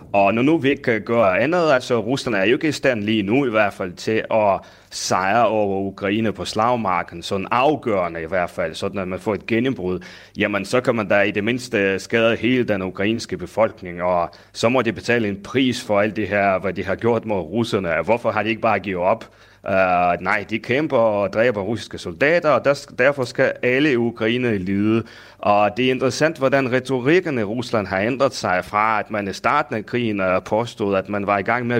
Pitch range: 100-125 Hz